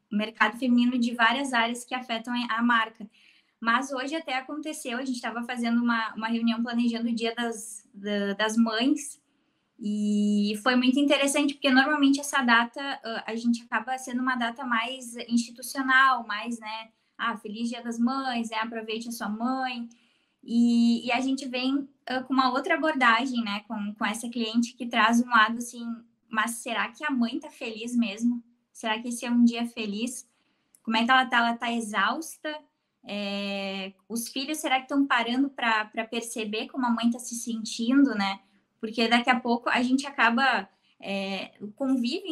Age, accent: 10-29, Brazilian